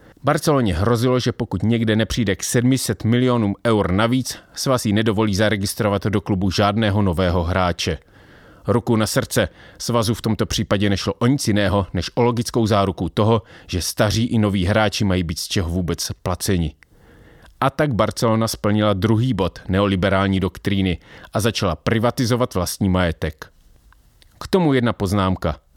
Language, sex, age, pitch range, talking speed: English, male, 30-49, 95-120 Hz, 145 wpm